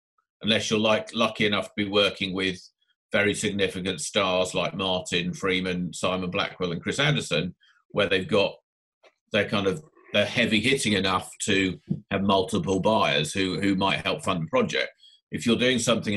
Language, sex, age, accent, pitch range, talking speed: English, male, 40-59, British, 95-110 Hz, 165 wpm